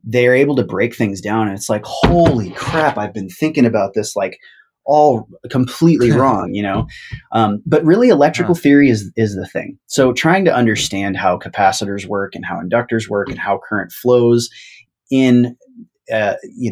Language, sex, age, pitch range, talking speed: English, male, 20-39, 100-125 Hz, 175 wpm